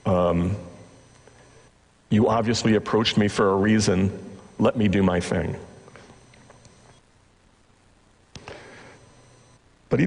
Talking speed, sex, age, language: 90 wpm, male, 40-59, English